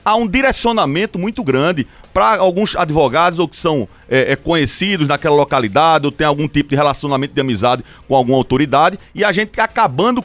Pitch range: 140-200 Hz